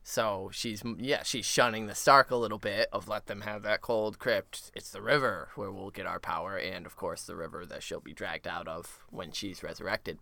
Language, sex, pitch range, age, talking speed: English, male, 105-130 Hz, 20-39, 230 wpm